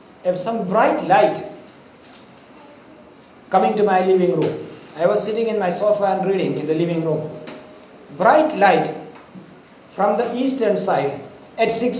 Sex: male